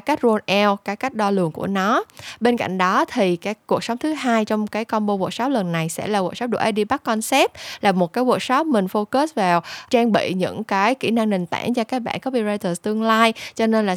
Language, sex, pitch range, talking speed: Vietnamese, female, 190-245 Hz, 245 wpm